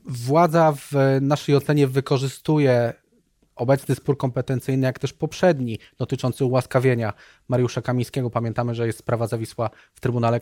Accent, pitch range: native, 120-140 Hz